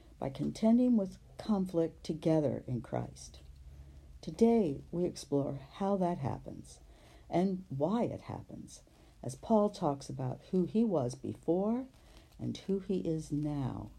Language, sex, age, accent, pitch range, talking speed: English, female, 60-79, American, 125-170 Hz, 130 wpm